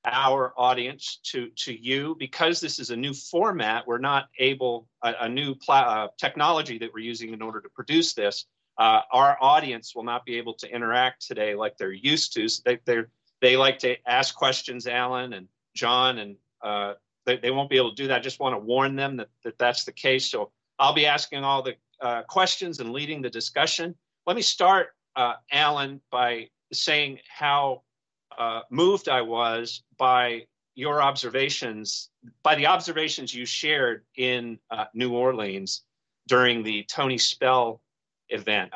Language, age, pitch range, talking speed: English, 40-59, 120-140 Hz, 175 wpm